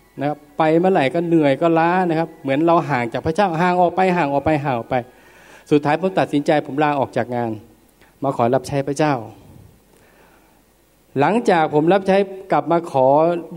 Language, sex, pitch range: Thai, male, 140-200 Hz